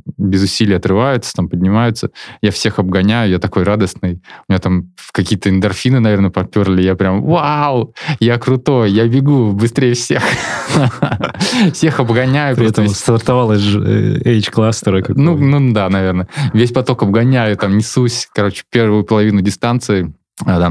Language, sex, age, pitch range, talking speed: Russian, male, 20-39, 95-120 Hz, 135 wpm